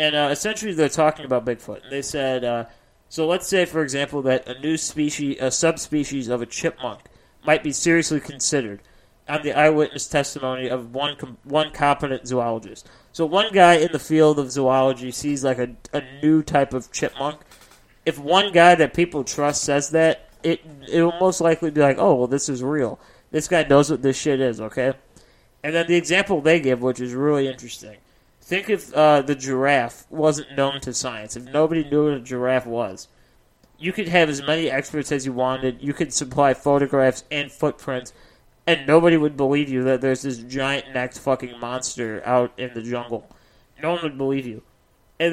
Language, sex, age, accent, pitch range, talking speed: English, male, 30-49, American, 130-155 Hz, 190 wpm